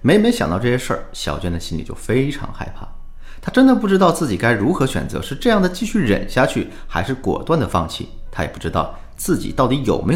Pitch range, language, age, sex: 85-125 Hz, Chinese, 30-49, male